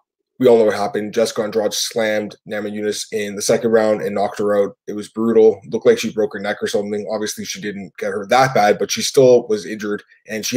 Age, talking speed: 20-39, 255 wpm